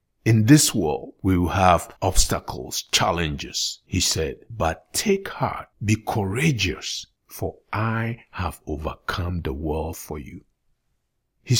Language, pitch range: English, 95-150 Hz